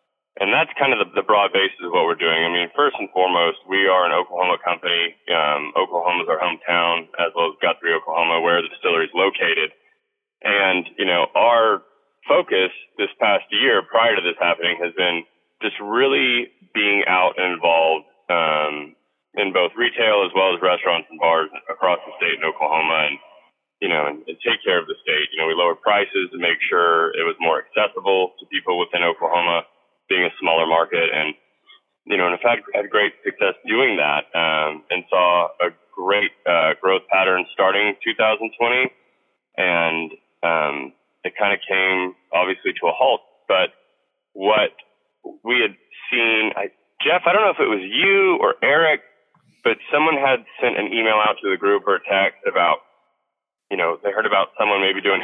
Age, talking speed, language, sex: 20-39, 185 wpm, English, male